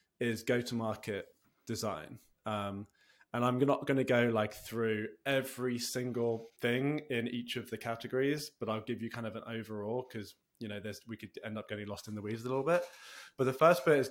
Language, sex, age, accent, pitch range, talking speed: English, male, 20-39, British, 110-130 Hz, 210 wpm